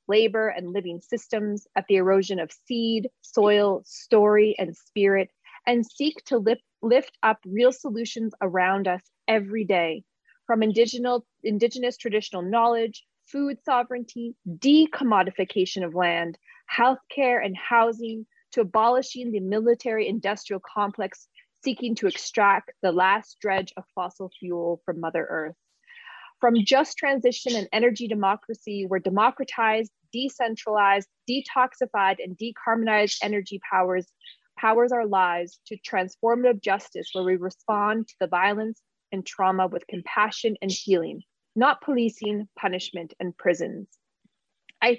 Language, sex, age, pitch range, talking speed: English, female, 30-49, 195-240 Hz, 125 wpm